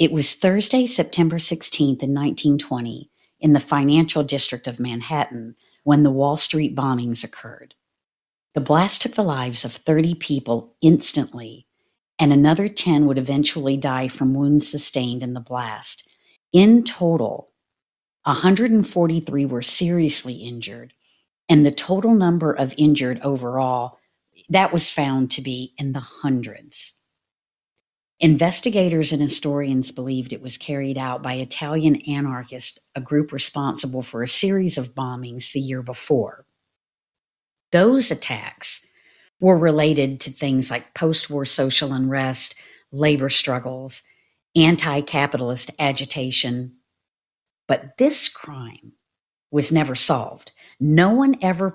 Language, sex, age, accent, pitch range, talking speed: English, female, 50-69, American, 130-155 Hz, 125 wpm